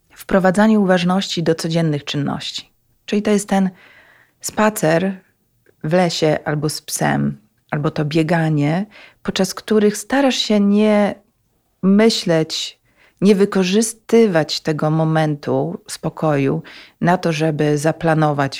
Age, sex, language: 40-59, female, Polish